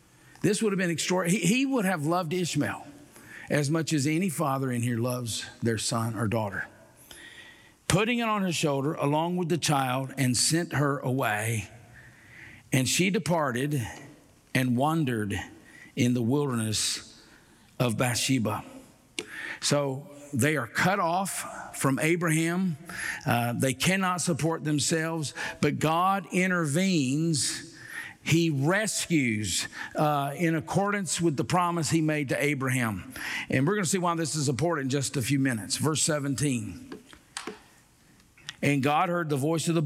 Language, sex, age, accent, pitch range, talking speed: English, male, 50-69, American, 125-165 Hz, 145 wpm